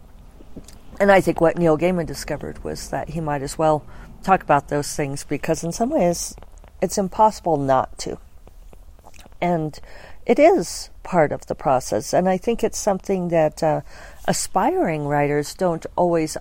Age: 50-69